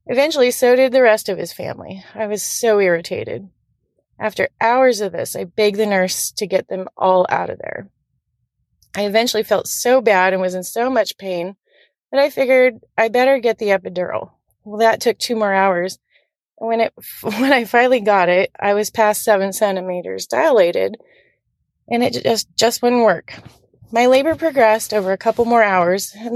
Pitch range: 190-235 Hz